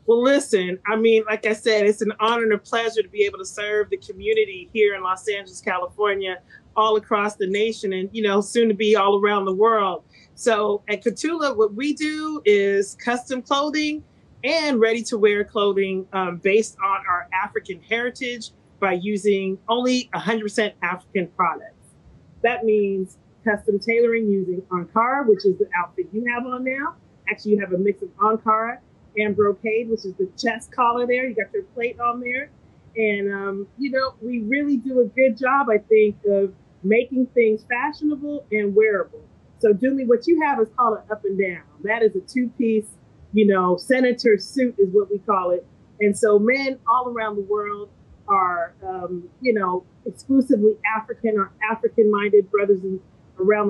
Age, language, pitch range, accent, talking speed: 30-49, English, 200-245 Hz, American, 180 wpm